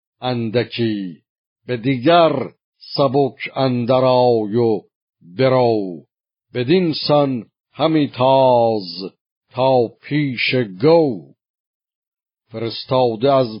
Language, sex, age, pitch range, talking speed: Persian, male, 50-69, 115-140 Hz, 70 wpm